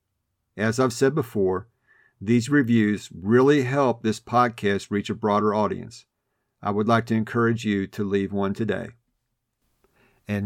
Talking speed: 145 wpm